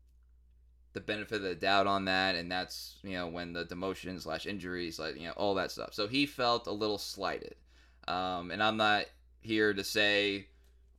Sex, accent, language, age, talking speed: male, American, English, 20-39, 185 wpm